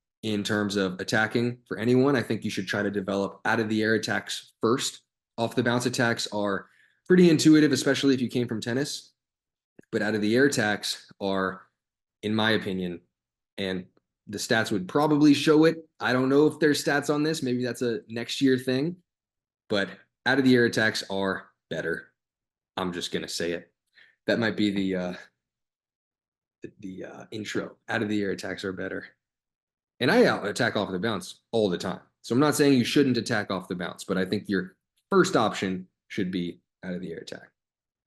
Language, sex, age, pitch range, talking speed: English, male, 20-39, 100-135 Hz, 195 wpm